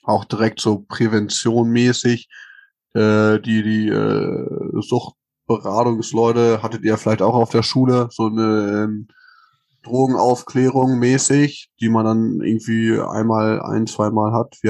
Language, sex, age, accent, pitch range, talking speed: German, male, 20-39, German, 110-130 Hz, 125 wpm